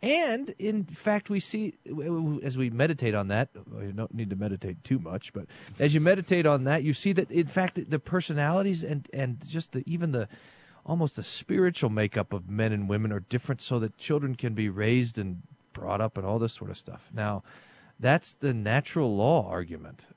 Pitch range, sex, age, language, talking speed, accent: 110-175 Hz, male, 40-59, English, 200 wpm, American